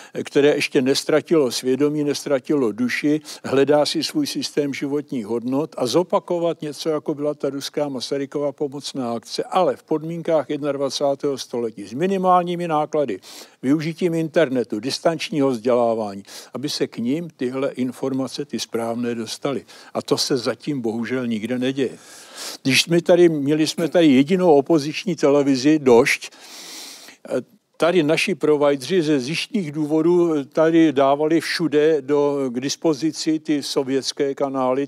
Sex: male